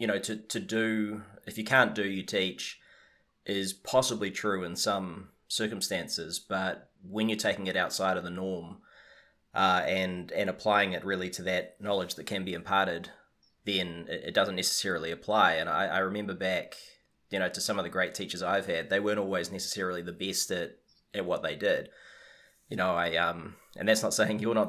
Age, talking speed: 20-39, 195 wpm